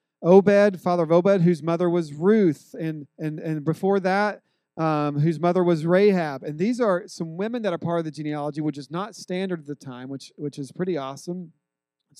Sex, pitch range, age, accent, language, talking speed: male, 145-185 Hz, 40-59, American, English, 205 wpm